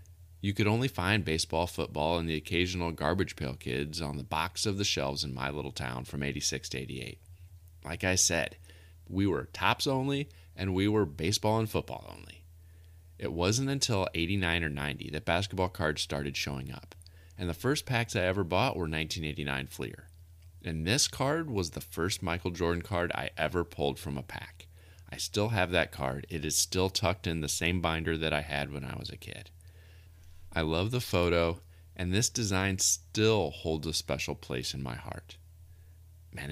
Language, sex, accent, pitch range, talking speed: English, male, American, 80-100 Hz, 185 wpm